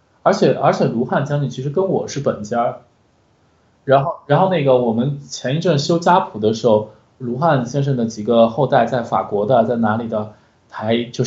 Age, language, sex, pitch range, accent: 20-39, Chinese, male, 125-195 Hz, native